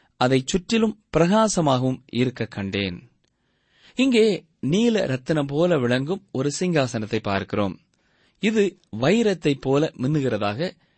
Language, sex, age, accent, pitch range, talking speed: Tamil, male, 30-49, native, 115-170 Hz, 95 wpm